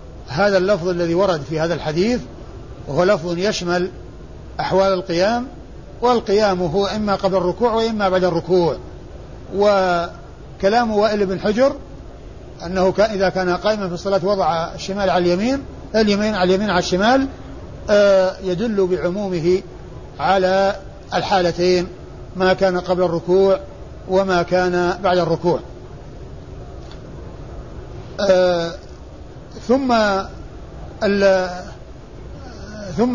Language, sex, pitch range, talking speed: Arabic, male, 180-205 Hz, 95 wpm